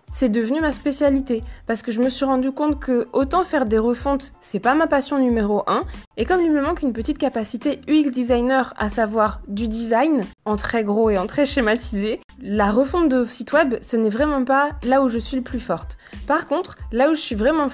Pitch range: 230-290 Hz